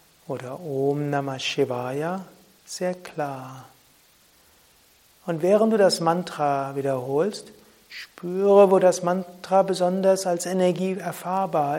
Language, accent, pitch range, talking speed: German, German, 145-180 Hz, 100 wpm